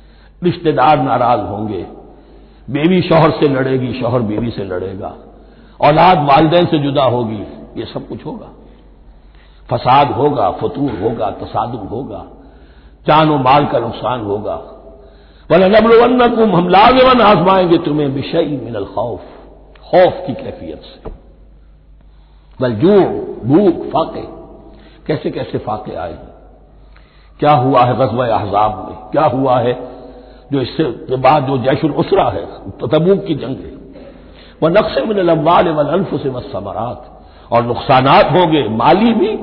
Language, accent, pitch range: Hindi, native, 125-170 Hz